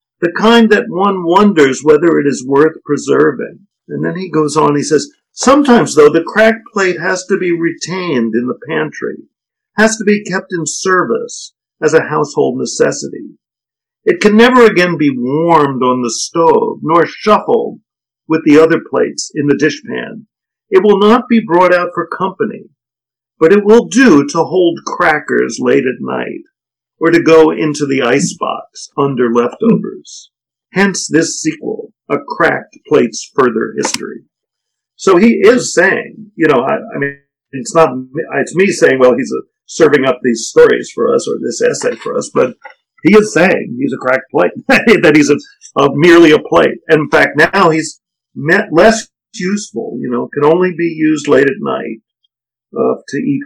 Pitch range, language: 150-220 Hz, English